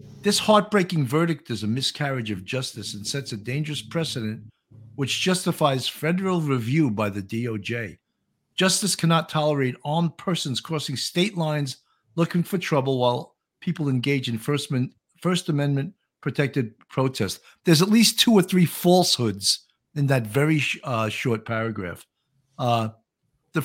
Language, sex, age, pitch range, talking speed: English, male, 50-69, 125-175 Hz, 140 wpm